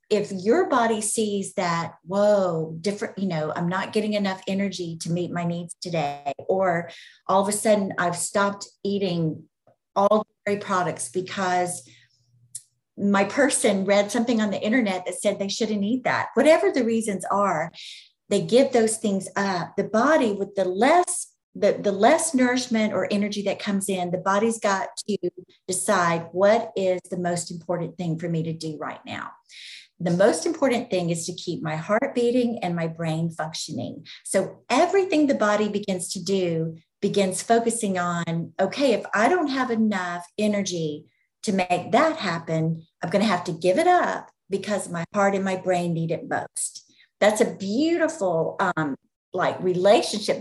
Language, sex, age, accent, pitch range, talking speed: English, female, 40-59, American, 175-215 Hz, 170 wpm